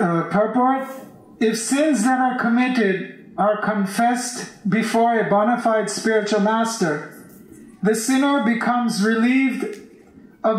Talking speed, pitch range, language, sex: 115 wpm, 205-245 Hz, English, male